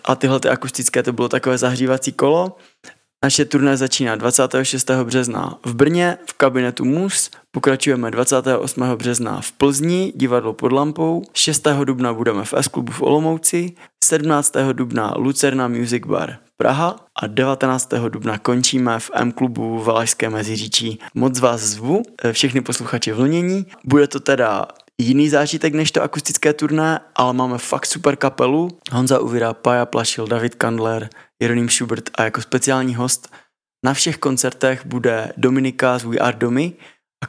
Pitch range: 120-140 Hz